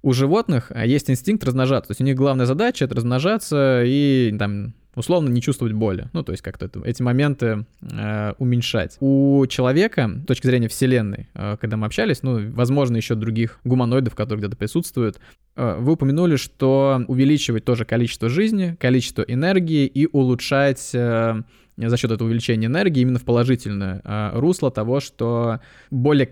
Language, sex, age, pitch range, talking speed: Russian, male, 20-39, 115-135 Hz, 155 wpm